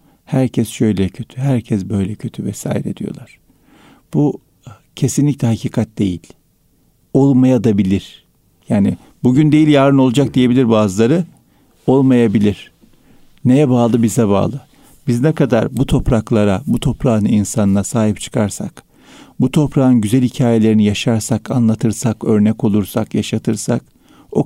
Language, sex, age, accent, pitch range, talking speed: Turkish, male, 50-69, native, 105-130 Hz, 115 wpm